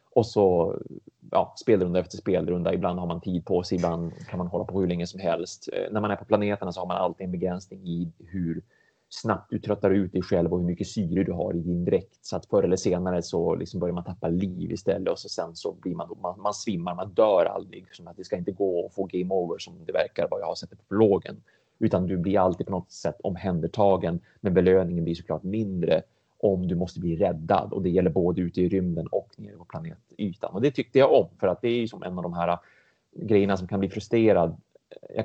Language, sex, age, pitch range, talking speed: Swedish, male, 30-49, 90-105 Hz, 240 wpm